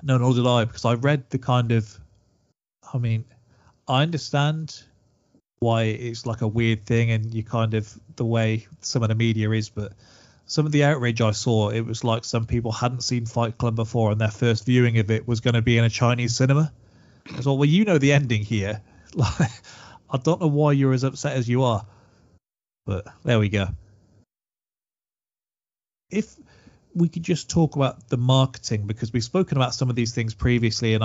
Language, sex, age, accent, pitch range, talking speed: English, male, 30-49, British, 110-135 Hz, 200 wpm